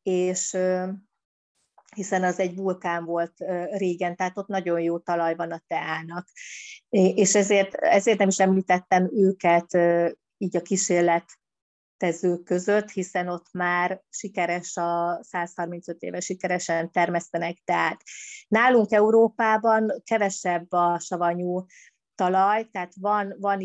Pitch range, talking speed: 180-195 Hz, 115 wpm